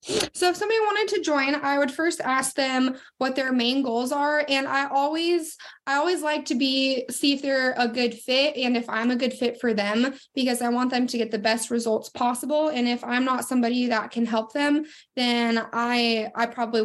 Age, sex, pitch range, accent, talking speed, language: 20-39, female, 235-300 Hz, American, 215 wpm, English